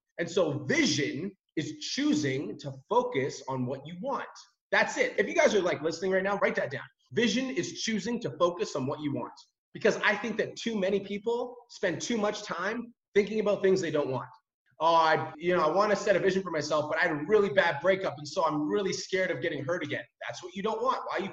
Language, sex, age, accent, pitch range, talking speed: English, male, 30-49, American, 165-235 Hz, 240 wpm